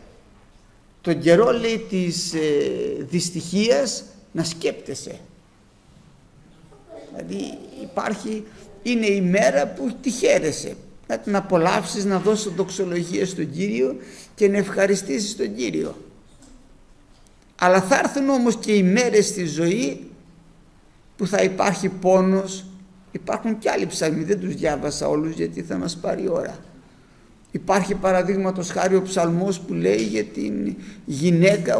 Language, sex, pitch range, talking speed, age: Greek, male, 175-225 Hz, 125 wpm, 50-69